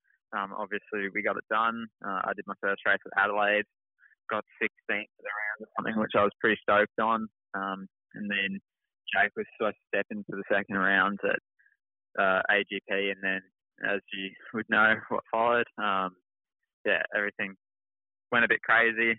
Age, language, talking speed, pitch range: 20-39, English, 180 wpm, 100-110 Hz